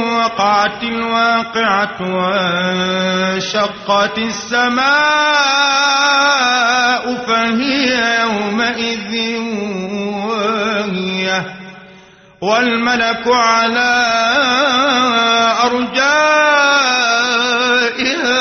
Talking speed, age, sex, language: 35 wpm, 30-49, male, Arabic